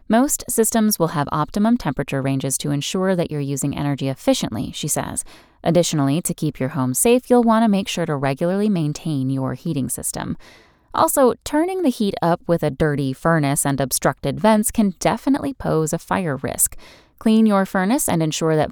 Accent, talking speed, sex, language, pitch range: American, 185 wpm, female, English, 145-215 Hz